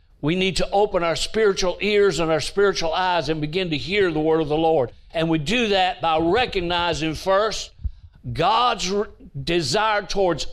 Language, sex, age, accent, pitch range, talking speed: English, male, 60-79, American, 150-190 Hz, 170 wpm